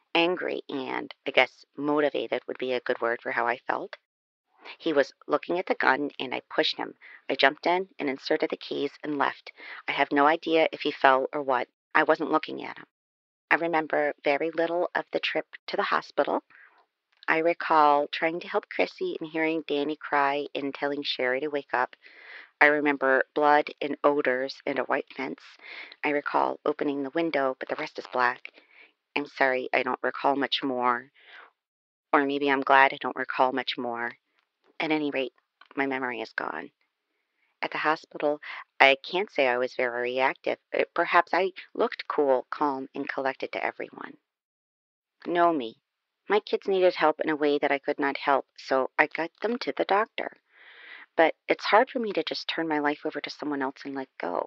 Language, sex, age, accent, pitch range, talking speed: English, female, 40-59, American, 130-155 Hz, 190 wpm